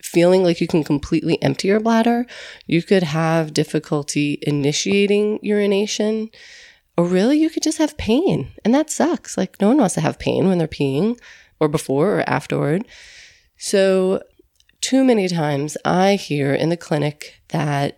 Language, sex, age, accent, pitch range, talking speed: English, female, 30-49, American, 155-220 Hz, 160 wpm